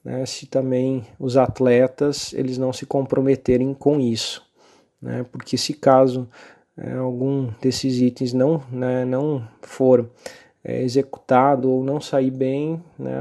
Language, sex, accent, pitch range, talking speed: Portuguese, male, Brazilian, 125-135 Hz, 120 wpm